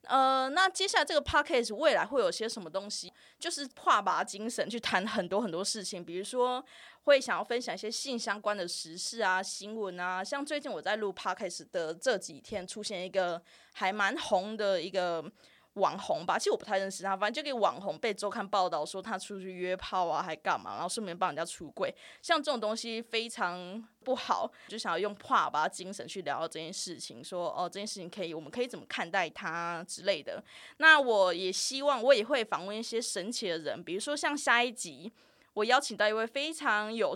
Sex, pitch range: female, 185-255 Hz